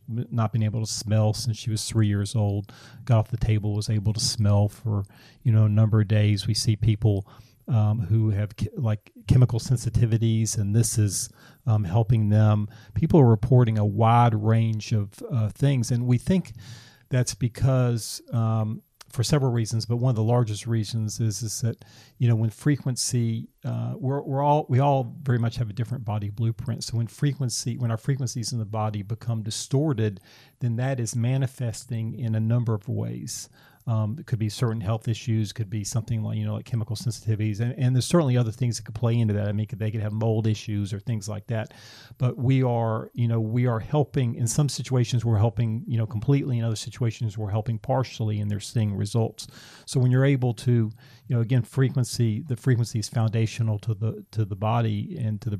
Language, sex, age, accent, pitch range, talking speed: English, male, 40-59, American, 110-125 Hz, 205 wpm